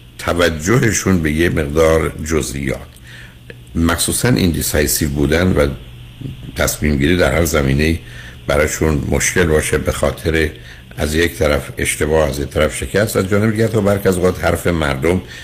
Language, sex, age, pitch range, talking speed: Persian, male, 60-79, 65-90 Hz, 130 wpm